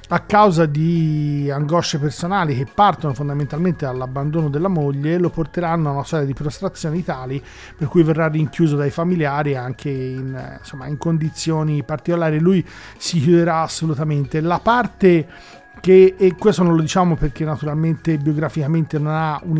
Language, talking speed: Italian, 150 wpm